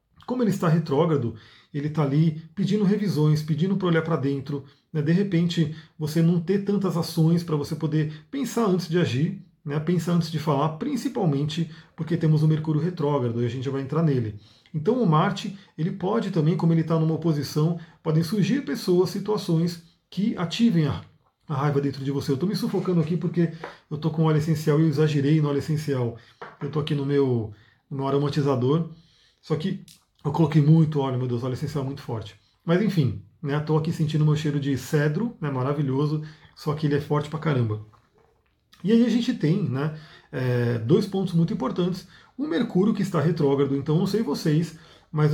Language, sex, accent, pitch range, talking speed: Portuguese, male, Brazilian, 145-175 Hz, 190 wpm